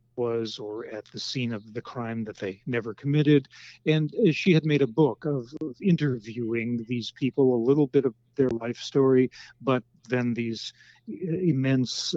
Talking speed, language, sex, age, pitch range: 170 wpm, English, male, 40-59, 115-140 Hz